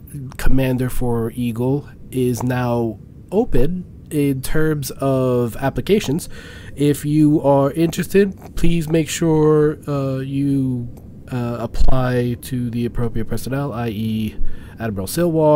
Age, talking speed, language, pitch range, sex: 20-39, 110 wpm, English, 110-135 Hz, male